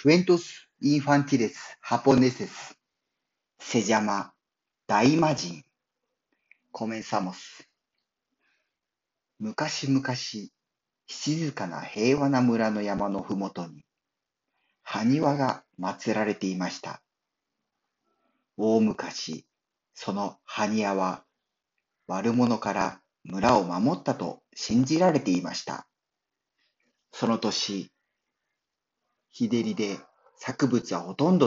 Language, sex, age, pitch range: Spanish, male, 40-59, 100-140 Hz